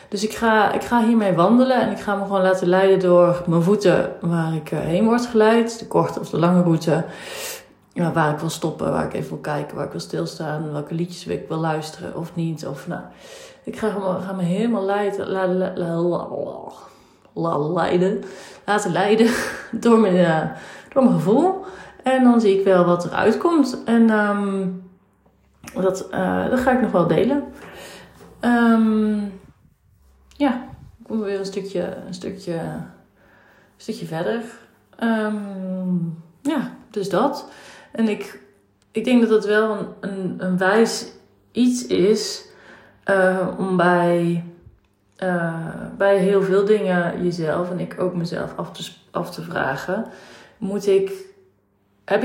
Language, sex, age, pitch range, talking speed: Dutch, female, 30-49, 175-215 Hz, 160 wpm